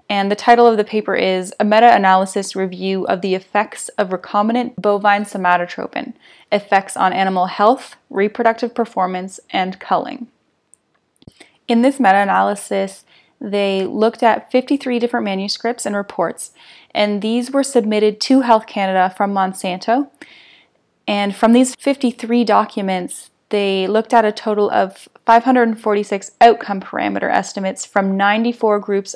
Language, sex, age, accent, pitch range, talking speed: English, female, 10-29, American, 195-235 Hz, 130 wpm